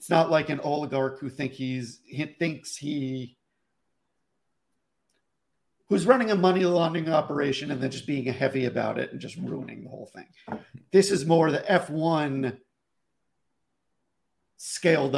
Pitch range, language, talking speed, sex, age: 130-165 Hz, English, 125 wpm, male, 50-69